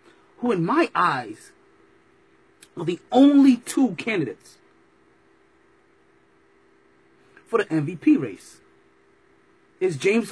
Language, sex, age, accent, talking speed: English, male, 30-49, American, 85 wpm